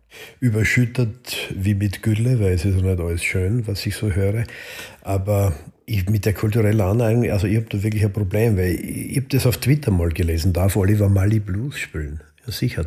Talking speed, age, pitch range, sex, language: 200 wpm, 50-69, 90-105 Hz, male, German